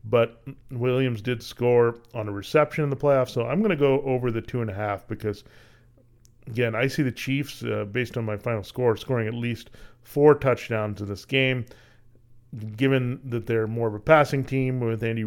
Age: 40-59